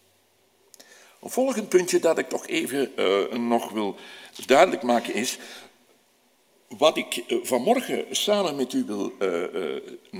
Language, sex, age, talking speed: Dutch, male, 60-79, 135 wpm